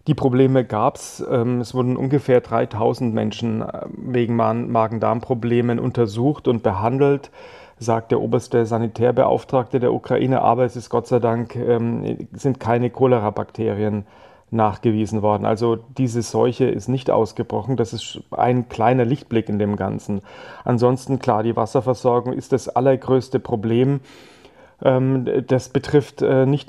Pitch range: 115-130 Hz